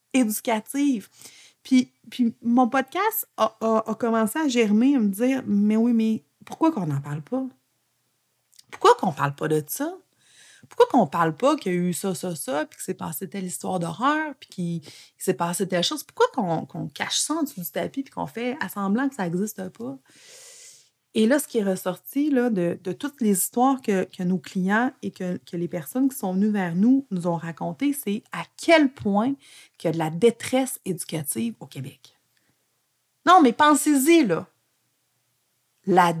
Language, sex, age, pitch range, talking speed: French, female, 30-49, 180-265 Hz, 195 wpm